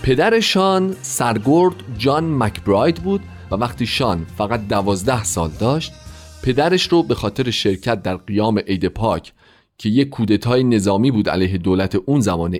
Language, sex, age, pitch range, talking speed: Persian, male, 40-59, 100-155 Hz, 145 wpm